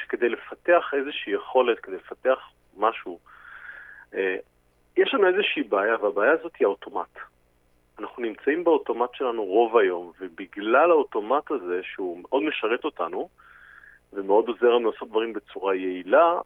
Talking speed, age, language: 125 wpm, 40-59, Hebrew